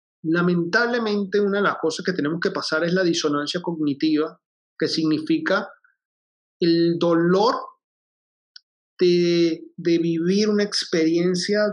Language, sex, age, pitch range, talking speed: Spanish, male, 30-49, 155-185 Hz, 115 wpm